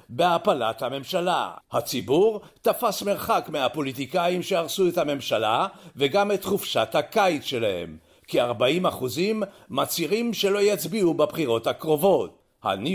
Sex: male